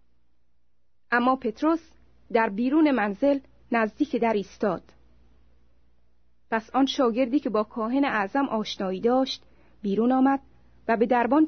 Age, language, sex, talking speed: 30-49, Persian, female, 115 wpm